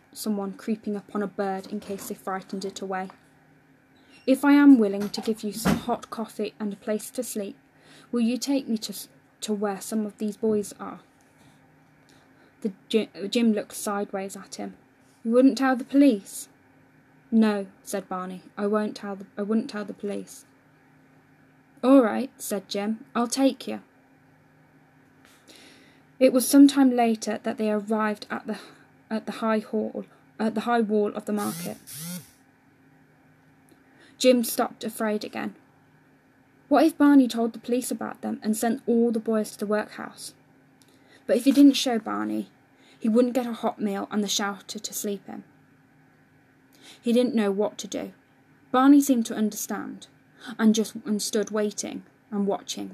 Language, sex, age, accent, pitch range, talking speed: English, female, 10-29, British, 140-230 Hz, 160 wpm